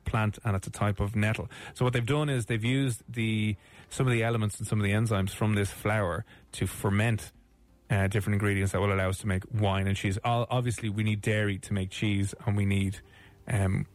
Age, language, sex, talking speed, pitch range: 30-49, English, male, 225 wpm, 105-125 Hz